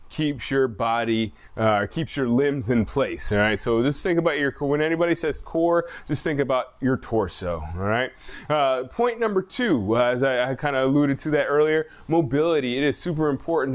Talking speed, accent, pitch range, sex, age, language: 205 wpm, American, 120-160 Hz, male, 20-39, English